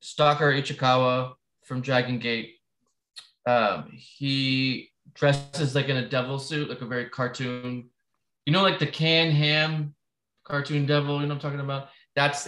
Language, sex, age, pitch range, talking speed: English, male, 20-39, 125-150 Hz, 155 wpm